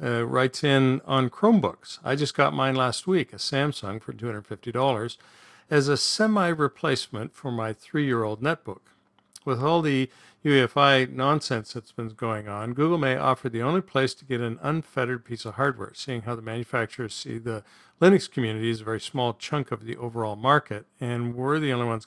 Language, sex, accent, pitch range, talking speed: English, male, American, 115-140 Hz, 180 wpm